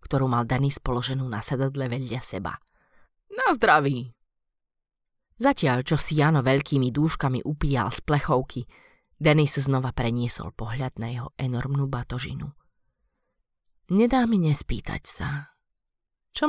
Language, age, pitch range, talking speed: Slovak, 30-49, 125-150 Hz, 115 wpm